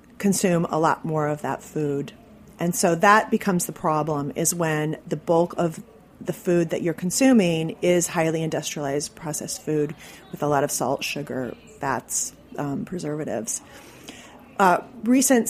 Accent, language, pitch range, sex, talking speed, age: American, English, 155-200 Hz, female, 150 wpm, 40-59